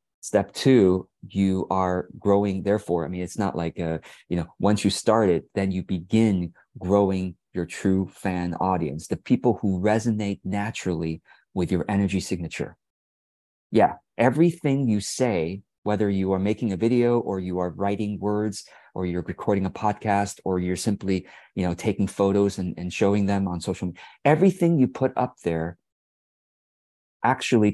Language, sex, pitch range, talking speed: English, male, 90-115 Hz, 160 wpm